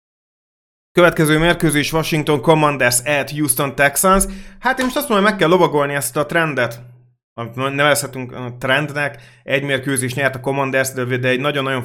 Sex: male